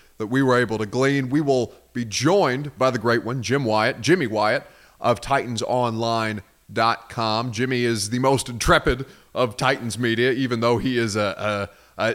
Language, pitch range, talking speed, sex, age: English, 110-130 Hz, 170 wpm, male, 30-49